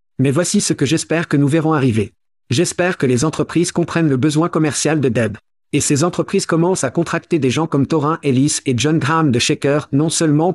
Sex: male